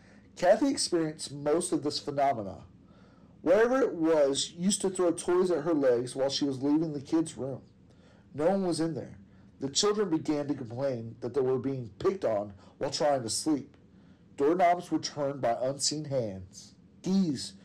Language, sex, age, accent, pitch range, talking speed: English, male, 40-59, American, 120-160 Hz, 175 wpm